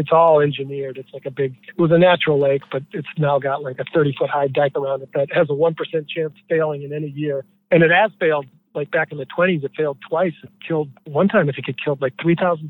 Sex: male